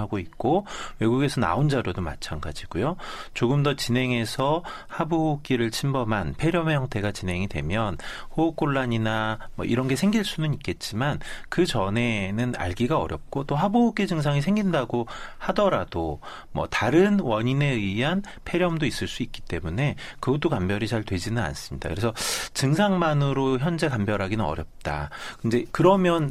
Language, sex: Korean, male